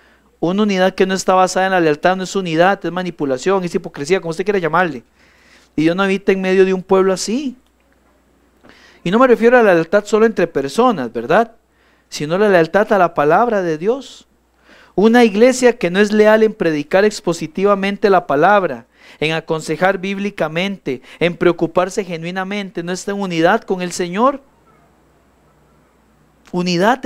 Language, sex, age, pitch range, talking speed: Spanish, male, 40-59, 175-225 Hz, 165 wpm